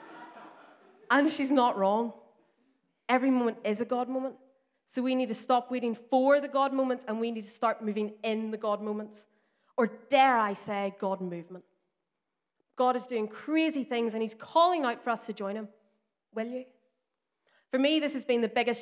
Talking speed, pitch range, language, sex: 190 wpm, 195-240 Hz, English, female